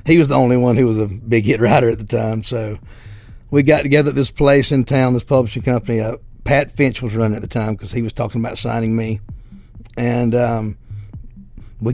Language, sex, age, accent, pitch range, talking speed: English, male, 40-59, American, 110-130 Hz, 220 wpm